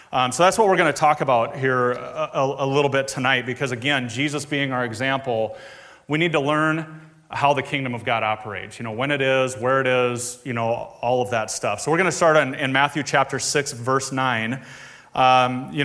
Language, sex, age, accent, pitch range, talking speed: English, male, 30-49, American, 130-155 Hz, 220 wpm